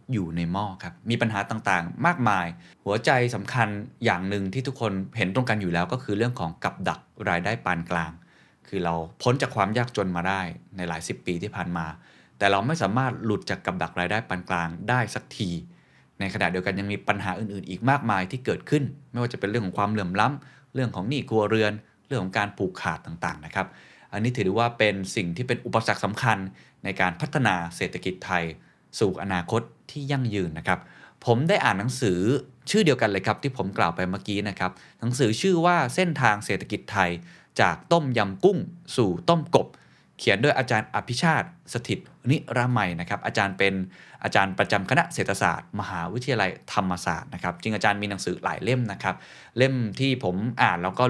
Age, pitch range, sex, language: 20-39, 95-125 Hz, male, Thai